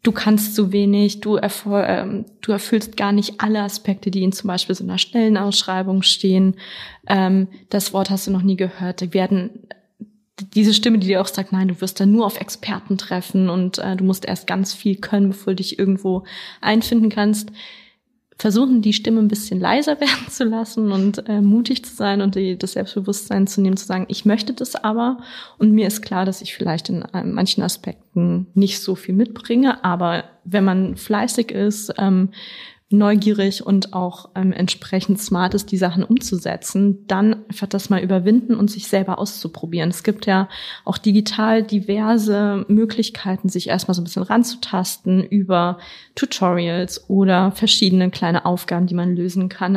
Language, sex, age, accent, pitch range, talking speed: German, female, 20-39, German, 190-215 Hz, 175 wpm